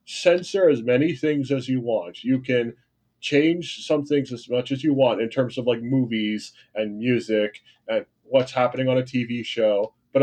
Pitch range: 115-140 Hz